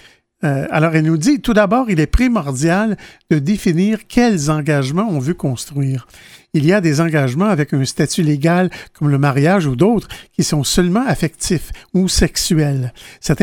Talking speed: 175 wpm